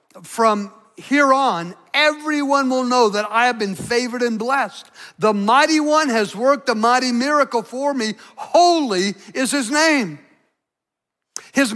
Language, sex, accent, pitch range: English, male, American, 255-315 Hz